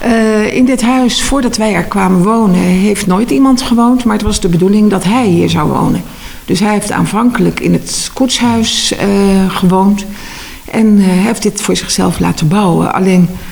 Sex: female